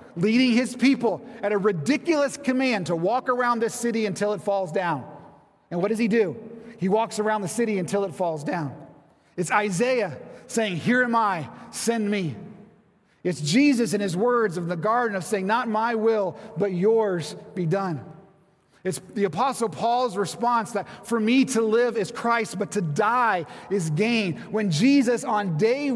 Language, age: English, 30-49